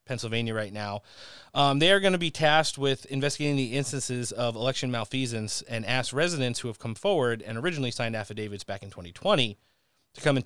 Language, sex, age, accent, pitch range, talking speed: English, male, 30-49, American, 115-150 Hz, 195 wpm